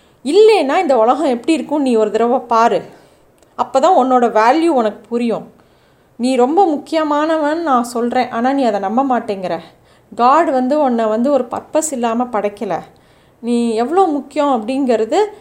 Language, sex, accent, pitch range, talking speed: Tamil, female, native, 220-280 Hz, 145 wpm